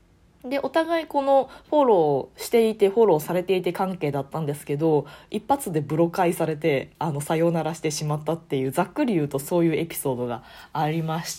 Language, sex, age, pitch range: Japanese, female, 20-39, 160-235 Hz